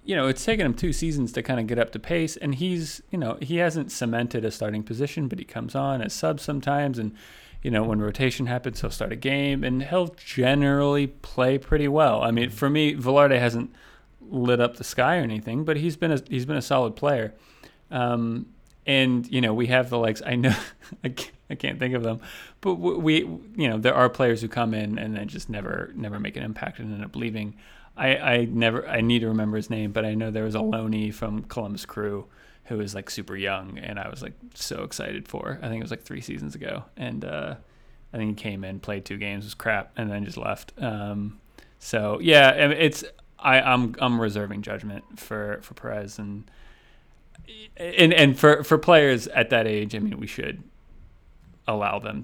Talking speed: 215 wpm